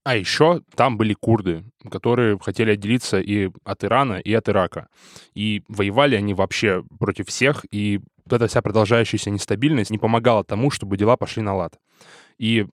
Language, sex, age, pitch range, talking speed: Russian, male, 10-29, 100-120 Hz, 165 wpm